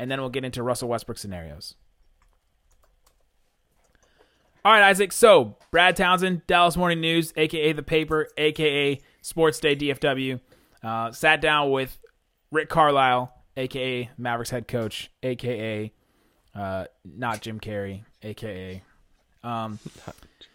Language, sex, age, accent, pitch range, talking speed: English, male, 30-49, American, 125-170 Hz, 120 wpm